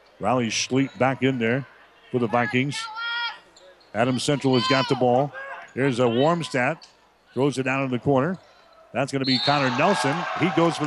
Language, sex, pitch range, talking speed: English, male, 125-150 Hz, 175 wpm